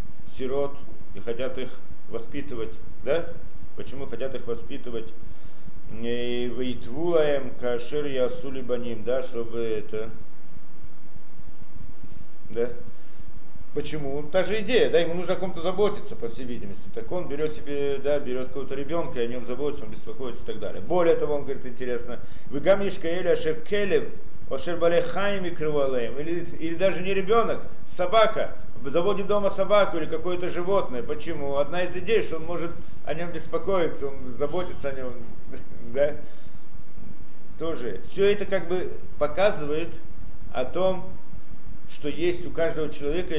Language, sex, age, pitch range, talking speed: Russian, male, 40-59, 125-175 Hz, 140 wpm